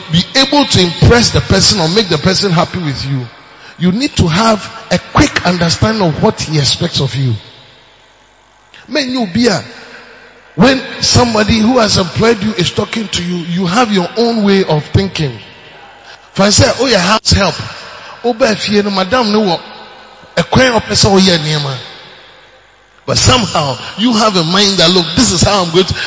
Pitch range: 140-205 Hz